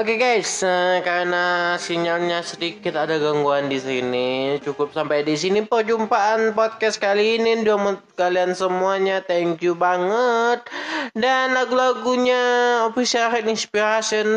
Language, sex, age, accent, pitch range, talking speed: Indonesian, male, 20-39, native, 150-210 Hz, 120 wpm